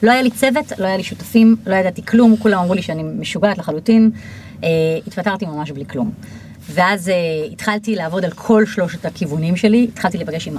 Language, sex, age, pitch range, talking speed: Hebrew, female, 30-49, 170-220 Hz, 180 wpm